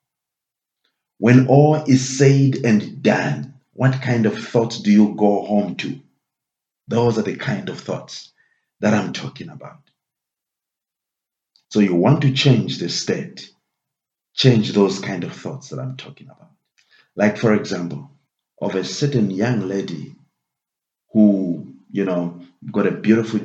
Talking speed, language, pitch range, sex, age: 140 wpm, English, 100-130 Hz, male, 50-69